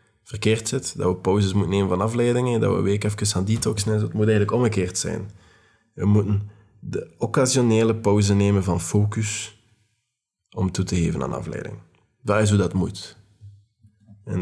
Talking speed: 170 wpm